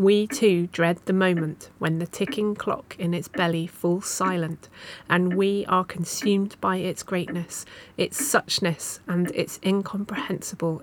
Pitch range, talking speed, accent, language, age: 180-220 Hz, 145 wpm, British, English, 30-49